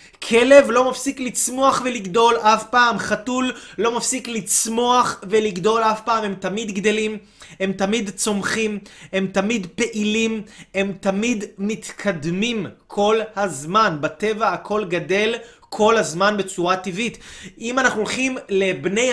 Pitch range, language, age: 195-235 Hz, Hebrew, 20-39